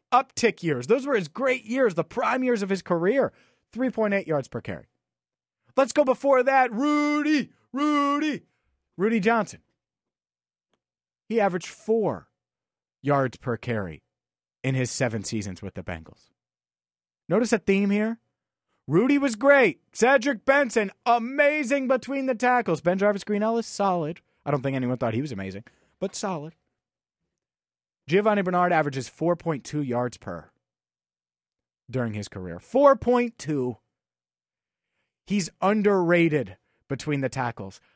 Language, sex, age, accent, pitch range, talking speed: English, male, 30-49, American, 130-220 Hz, 130 wpm